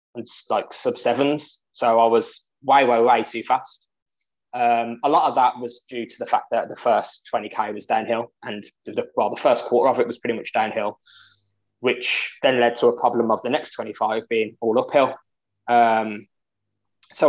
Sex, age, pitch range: male, 20-39, 110-140 Hz